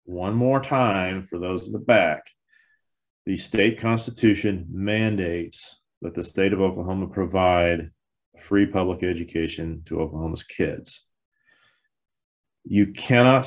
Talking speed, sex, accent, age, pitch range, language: 115 wpm, male, American, 30-49, 90-115 Hz, English